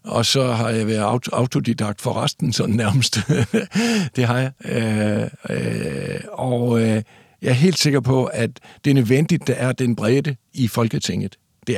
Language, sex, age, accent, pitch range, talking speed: Danish, male, 60-79, native, 110-135 Hz, 165 wpm